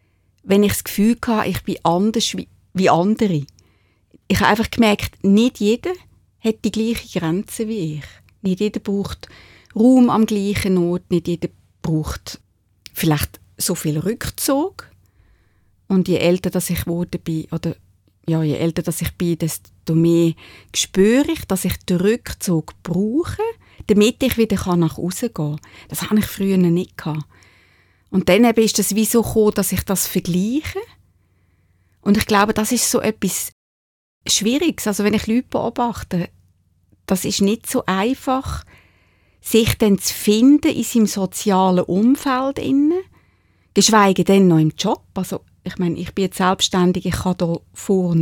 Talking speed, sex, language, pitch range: 160 wpm, female, German, 165-220 Hz